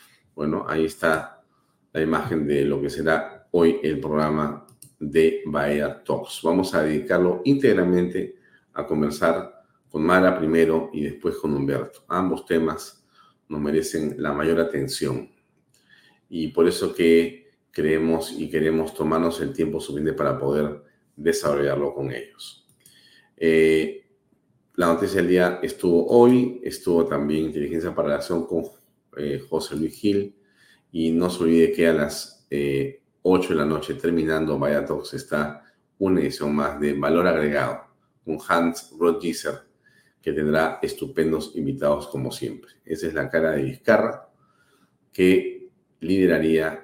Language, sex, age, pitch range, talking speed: Spanish, male, 50-69, 75-85 Hz, 135 wpm